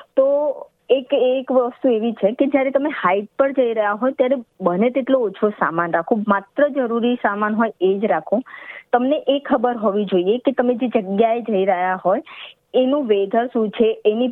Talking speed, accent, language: 170 wpm, native, Gujarati